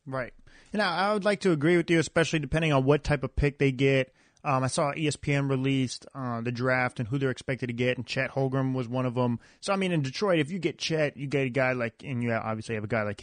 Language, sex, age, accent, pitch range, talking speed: English, male, 30-49, American, 130-165 Hz, 275 wpm